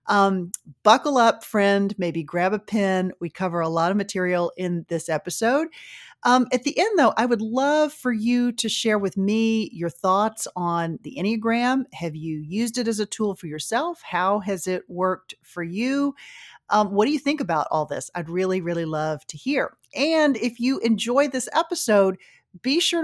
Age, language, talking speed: 40-59, English, 190 wpm